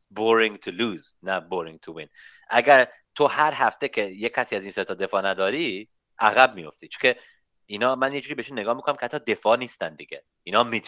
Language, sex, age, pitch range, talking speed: Persian, male, 30-49, 105-135 Hz, 190 wpm